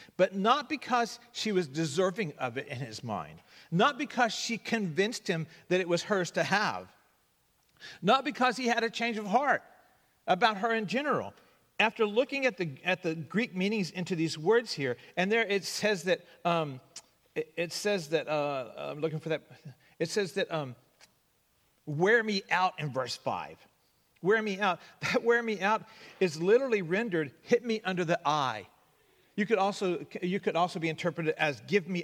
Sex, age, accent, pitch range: male, 50-69, American, 160-210 Hz